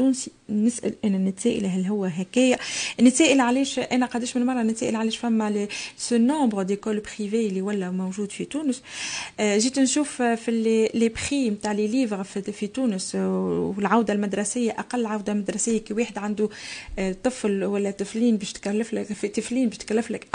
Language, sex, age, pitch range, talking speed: Arabic, female, 30-49, 200-240 Hz, 140 wpm